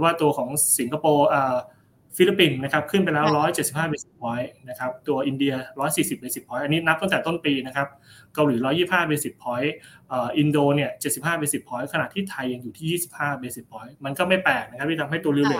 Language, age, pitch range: Thai, 20-39, 130-155 Hz